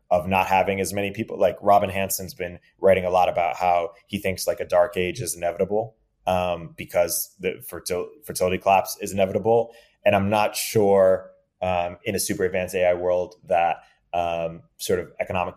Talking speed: 175 wpm